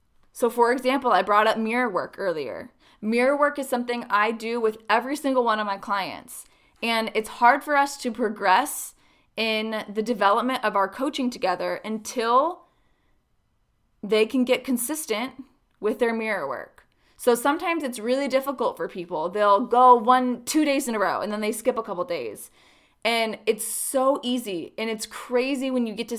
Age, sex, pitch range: 20-39, female, 215-260 Hz